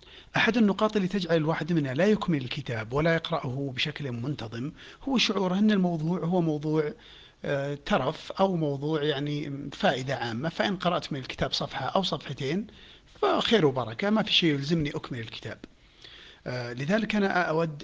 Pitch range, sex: 140-185 Hz, male